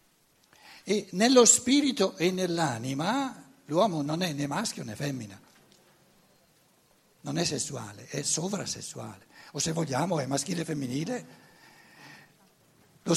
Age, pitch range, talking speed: 60-79, 140-200 Hz, 115 wpm